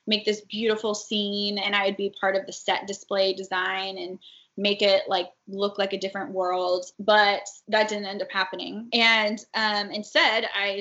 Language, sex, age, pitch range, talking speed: English, female, 10-29, 195-220 Hz, 185 wpm